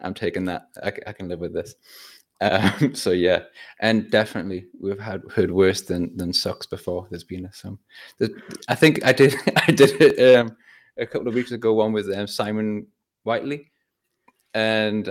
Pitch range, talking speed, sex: 105-130 Hz, 170 wpm, male